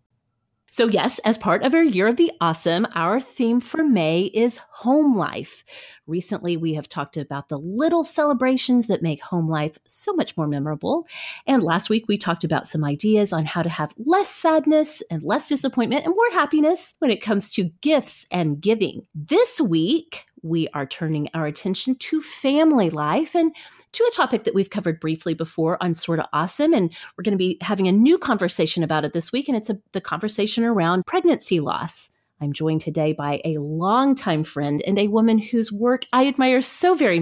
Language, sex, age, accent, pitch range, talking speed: English, female, 30-49, American, 165-260 Hz, 190 wpm